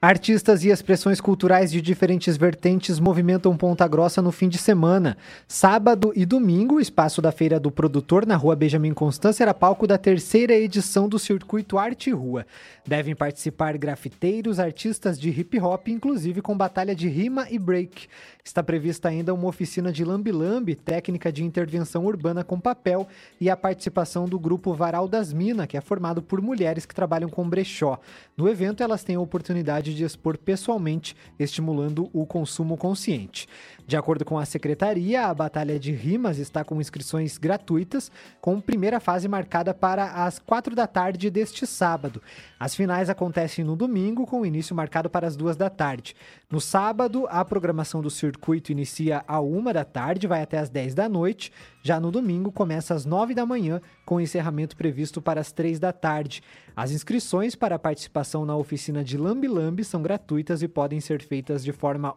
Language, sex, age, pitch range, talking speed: Portuguese, male, 20-39, 155-195 Hz, 175 wpm